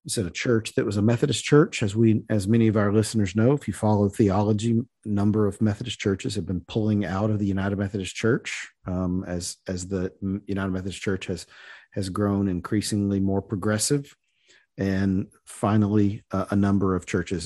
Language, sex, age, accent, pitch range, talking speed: English, male, 40-59, American, 95-115 Hz, 190 wpm